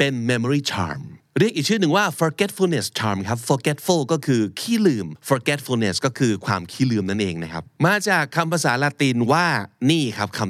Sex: male